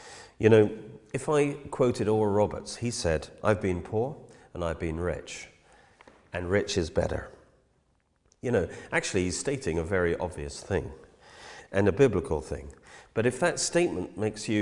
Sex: male